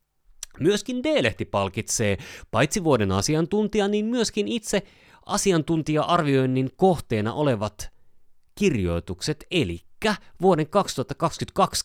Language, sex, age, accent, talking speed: Finnish, male, 30-49, native, 80 wpm